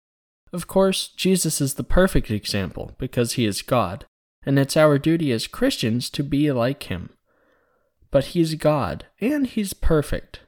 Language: English